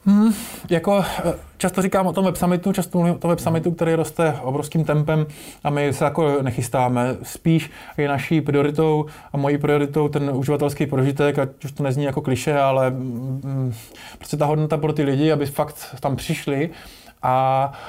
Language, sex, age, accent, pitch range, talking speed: Czech, male, 20-39, native, 135-155 Hz, 175 wpm